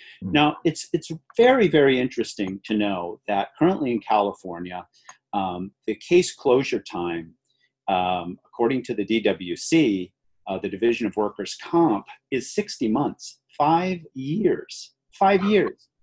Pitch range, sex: 110-165 Hz, male